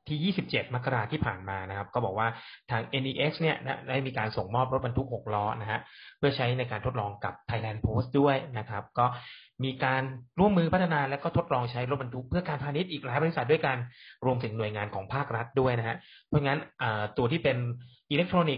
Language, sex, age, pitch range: Thai, male, 30-49, 115-150 Hz